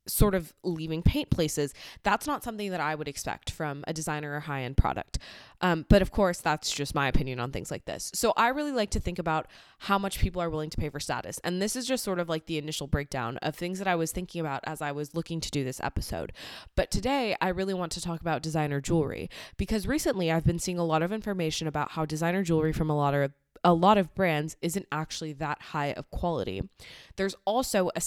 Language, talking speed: English, 235 wpm